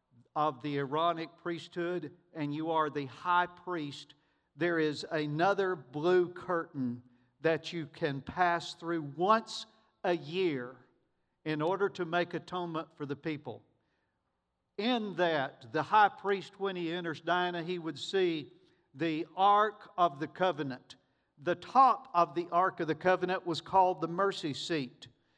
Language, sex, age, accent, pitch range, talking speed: English, male, 50-69, American, 155-195 Hz, 145 wpm